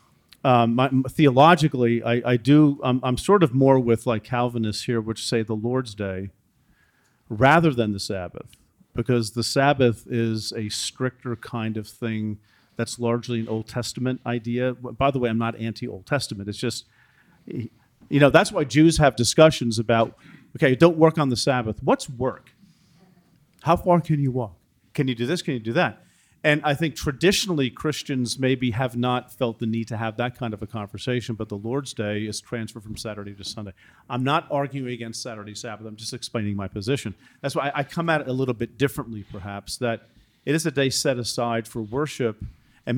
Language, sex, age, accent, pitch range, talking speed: English, male, 40-59, American, 115-145 Hz, 190 wpm